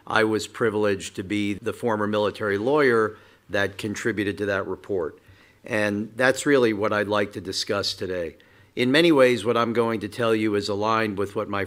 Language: English